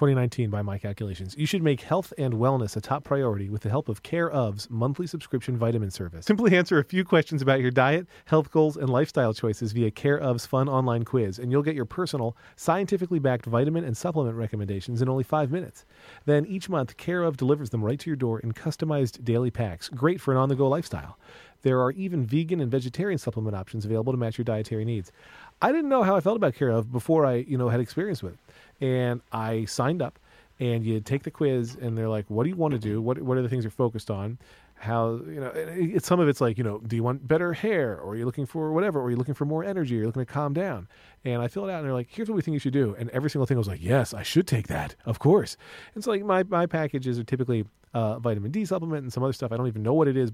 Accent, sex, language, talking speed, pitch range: American, male, English, 265 wpm, 115-155 Hz